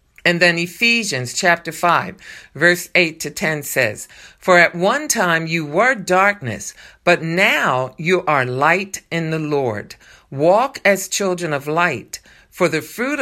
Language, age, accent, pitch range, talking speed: English, 50-69, American, 150-200 Hz, 150 wpm